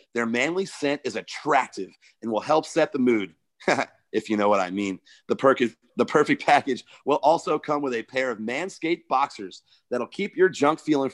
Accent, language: American, English